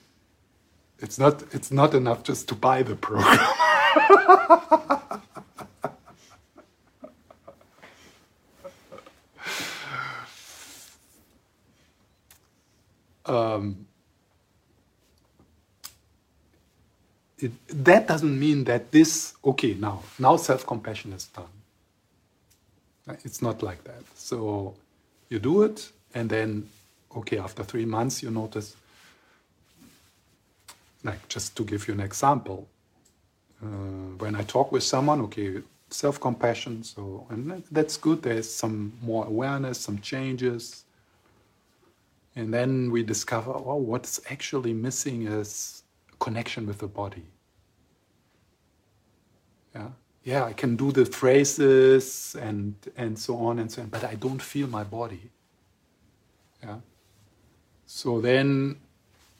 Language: English